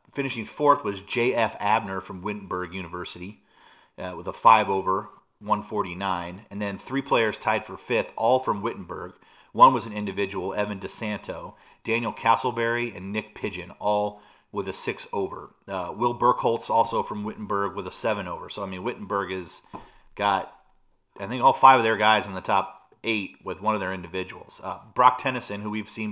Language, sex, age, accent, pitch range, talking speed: English, male, 30-49, American, 100-125 Hz, 170 wpm